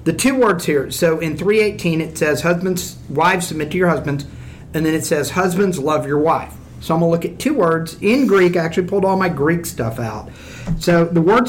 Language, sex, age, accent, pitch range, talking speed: English, male, 50-69, American, 150-180 Hz, 230 wpm